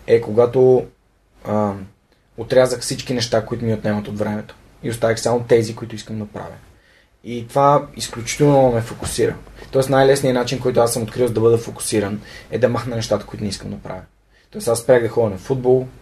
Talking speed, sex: 185 wpm, male